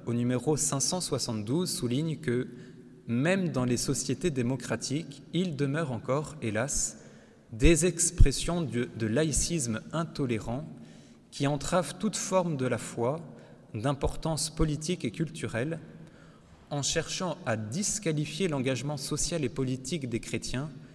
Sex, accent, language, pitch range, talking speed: male, French, French, 120-155 Hz, 115 wpm